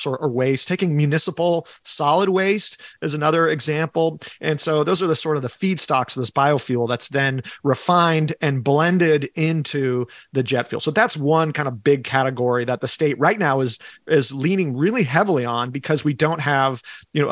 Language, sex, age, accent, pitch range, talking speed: English, male, 40-59, American, 125-160 Hz, 190 wpm